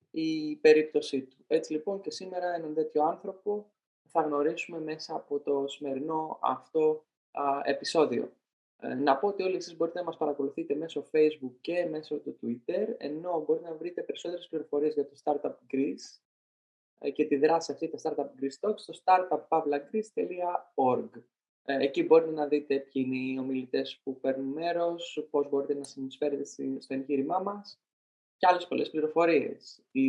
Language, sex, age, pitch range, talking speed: Greek, male, 20-39, 135-170 Hz, 160 wpm